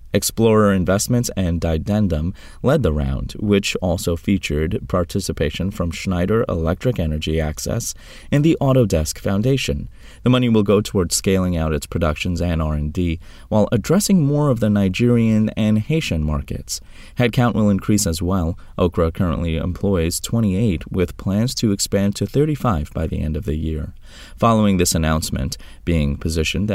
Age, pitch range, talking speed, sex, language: 30-49, 80-115 Hz, 150 wpm, male, English